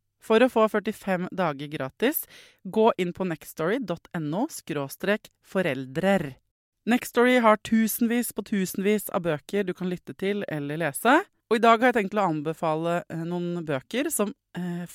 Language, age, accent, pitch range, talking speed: English, 20-39, Swedish, 165-220 Hz, 135 wpm